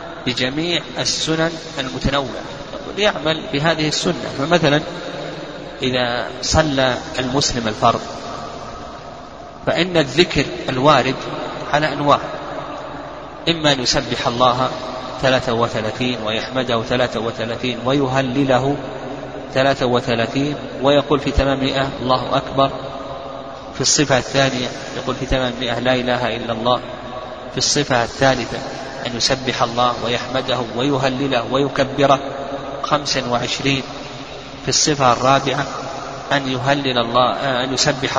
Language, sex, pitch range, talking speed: Arabic, male, 125-150 Hz, 95 wpm